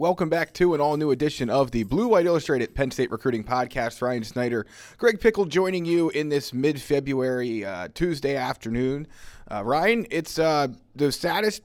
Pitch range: 120-155 Hz